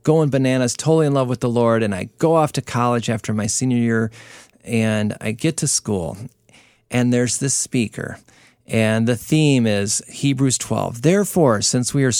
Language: English